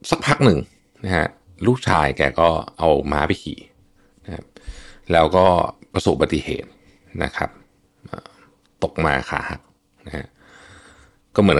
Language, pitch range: Thai, 70-95 Hz